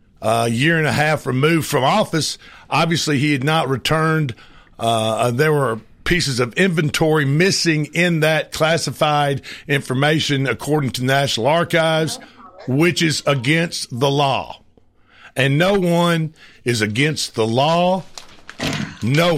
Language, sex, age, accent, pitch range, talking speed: English, male, 50-69, American, 135-165 Hz, 135 wpm